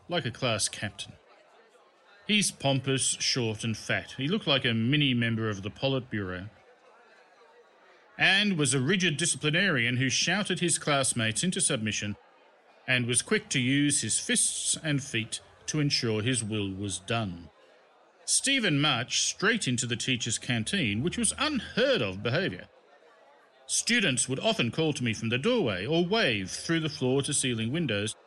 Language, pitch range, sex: English, 115-165 Hz, male